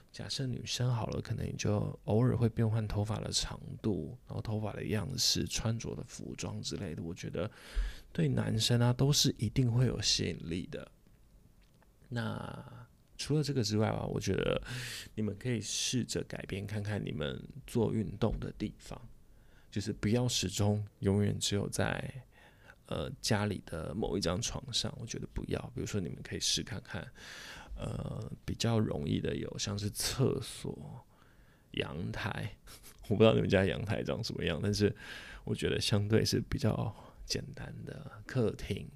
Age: 20-39